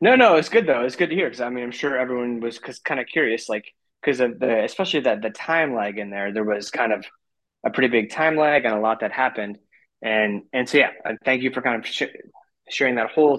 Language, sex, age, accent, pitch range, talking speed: English, male, 20-39, American, 115-140 Hz, 255 wpm